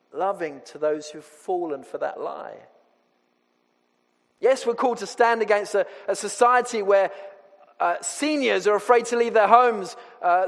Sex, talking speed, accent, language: male, 155 wpm, British, English